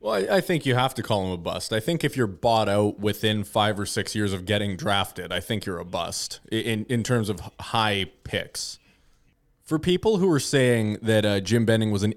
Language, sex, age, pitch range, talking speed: English, male, 20-39, 105-125 Hz, 230 wpm